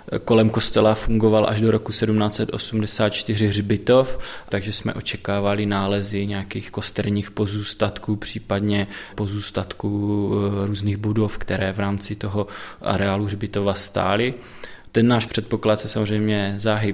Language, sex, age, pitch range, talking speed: Czech, male, 20-39, 100-110 Hz, 115 wpm